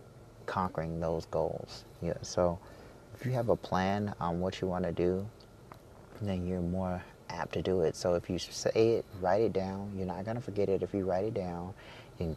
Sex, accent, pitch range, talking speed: male, American, 90-105 Hz, 210 wpm